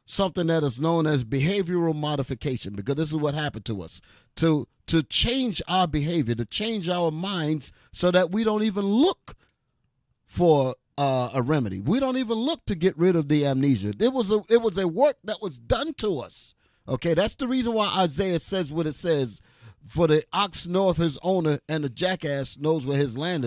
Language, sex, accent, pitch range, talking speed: English, male, American, 125-180 Hz, 195 wpm